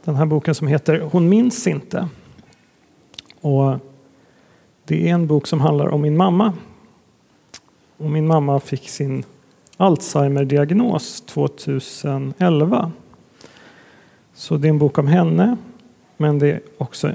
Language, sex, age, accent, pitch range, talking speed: Swedish, male, 40-59, native, 135-165 Hz, 115 wpm